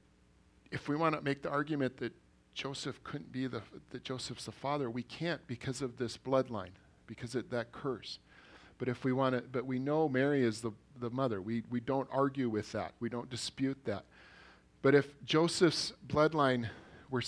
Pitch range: 110-140 Hz